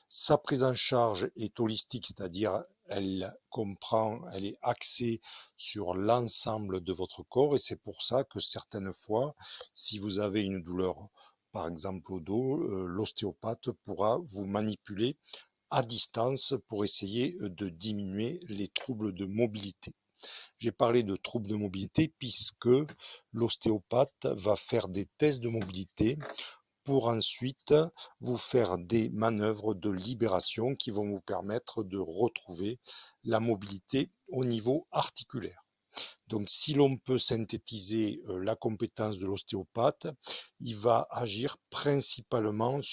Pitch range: 100-125 Hz